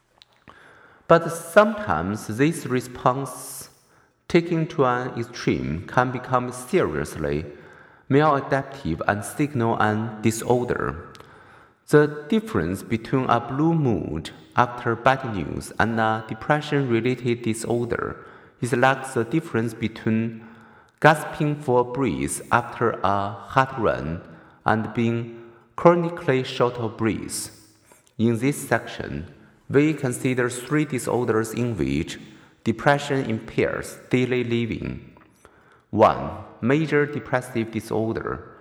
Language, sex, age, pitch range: Chinese, male, 50-69, 110-135 Hz